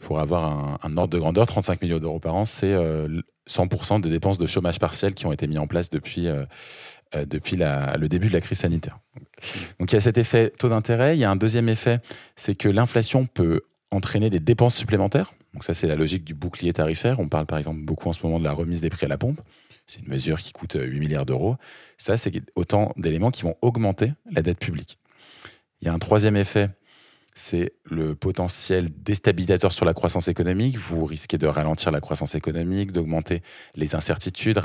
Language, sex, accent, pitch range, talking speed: French, male, French, 80-110 Hz, 215 wpm